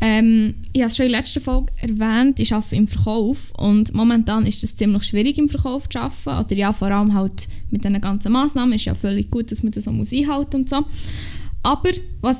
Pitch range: 220-275 Hz